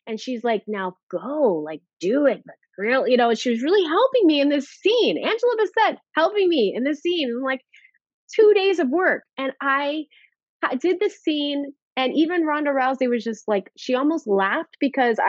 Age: 20-39